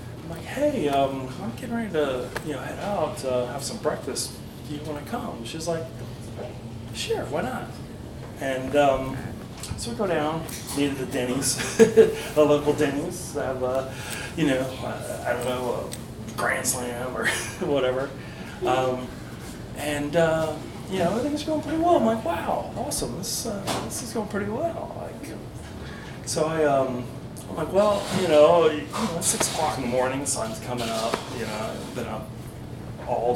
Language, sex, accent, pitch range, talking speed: English, male, American, 120-155 Hz, 175 wpm